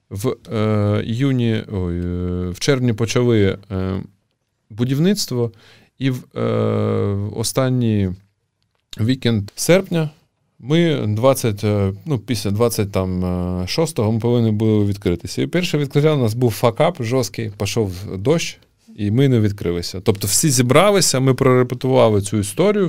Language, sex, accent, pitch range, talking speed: Ukrainian, male, native, 105-130 Hz, 115 wpm